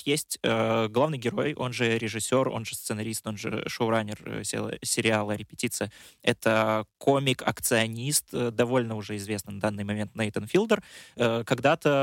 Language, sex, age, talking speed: Russian, male, 20-39, 125 wpm